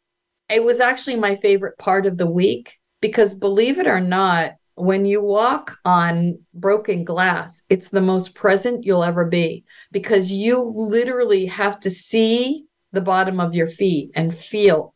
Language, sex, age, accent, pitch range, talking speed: English, female, 50-69, American, 175-210 Hz, 160 wpm